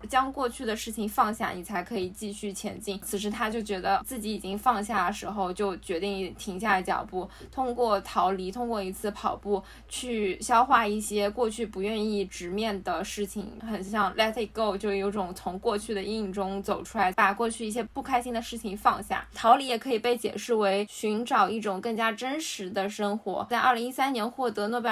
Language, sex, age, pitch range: Chinese, female, 10-29, 200-235 Hz